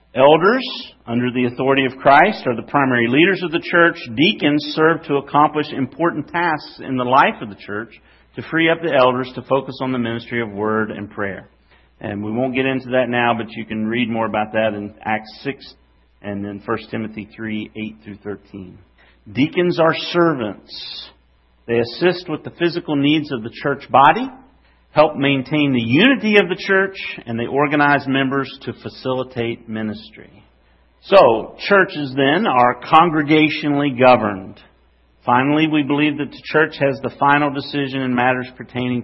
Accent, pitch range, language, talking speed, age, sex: American, 110-145 Hz, English, 170 wpm, 50-69, male